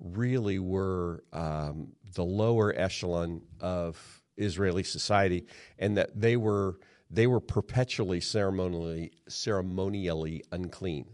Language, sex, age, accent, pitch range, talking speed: English, male, 40-59, American, 80-100 Hz, 100 wpm